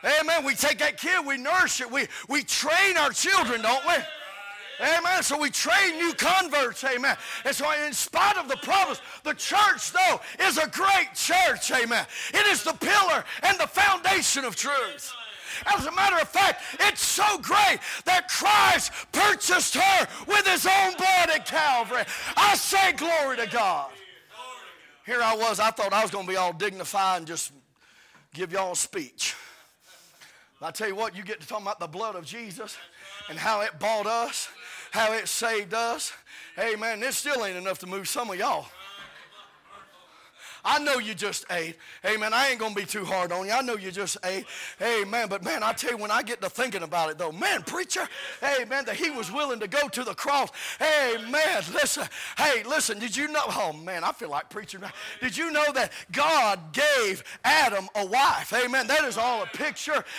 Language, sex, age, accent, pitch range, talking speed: English, male, 40-59, American, 215-330 Hz, 195 wpm